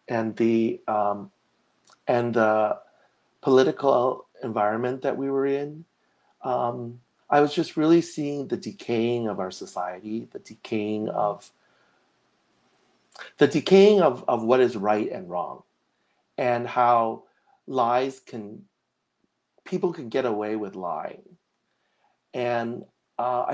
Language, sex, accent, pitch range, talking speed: English, male, American, 105-135 Hz, 115 wpm